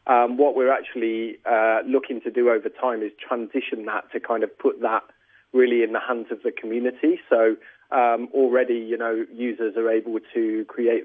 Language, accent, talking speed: English, British, 190 wpm